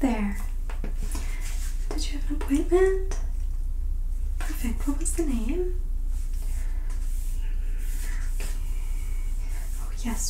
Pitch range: 70-90 Hz